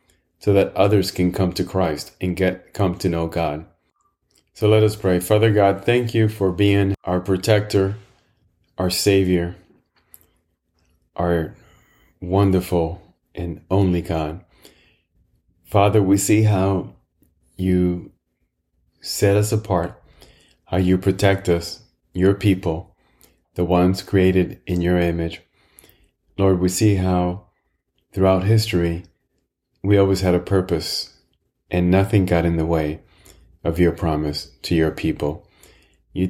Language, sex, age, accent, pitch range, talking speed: English, male, 30-49, American, 85-100 Hz, 125 wpm